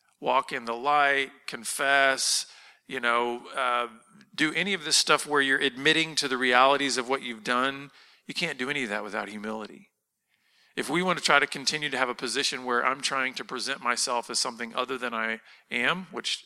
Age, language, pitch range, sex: 40-59, English, 125-160 Hz, male